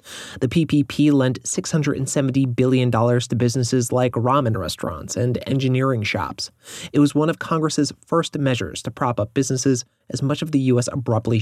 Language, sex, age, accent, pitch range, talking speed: English, male, 30-49, American, 110-130 Hz, 160 wpm